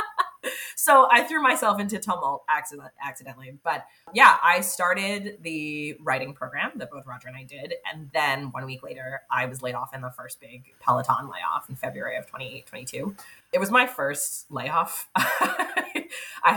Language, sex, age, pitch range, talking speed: English, female, 20-39, 135-190 Hz, 165 wpm